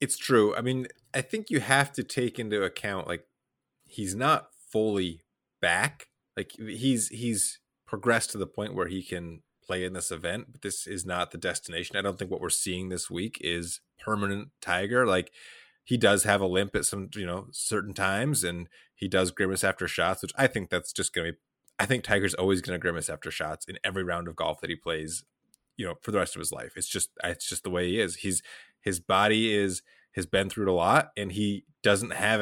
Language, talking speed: English, 225 wpm